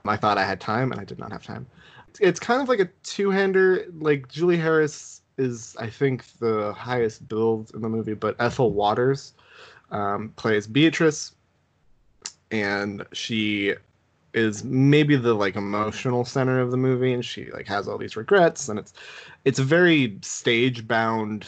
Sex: male